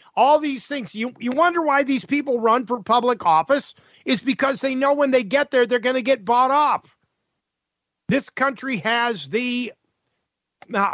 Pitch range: 205-270 Hz